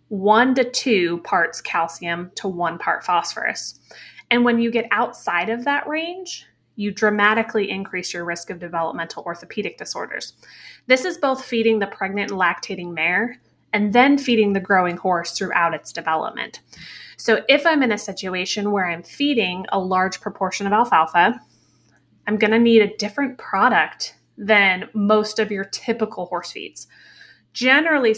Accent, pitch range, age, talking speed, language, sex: American, 180-230 Hz, 20-39, 155 wpm, English, female